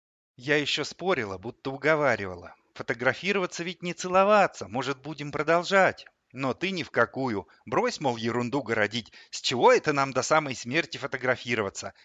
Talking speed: 145 wpm